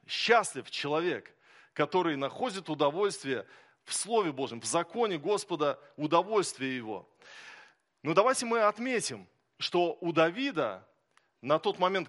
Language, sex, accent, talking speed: Russian, male, native, 115 wpm